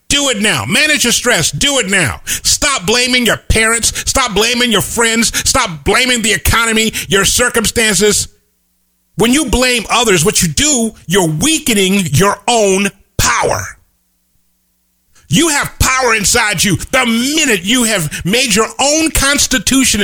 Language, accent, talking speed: English, American, 145 wpm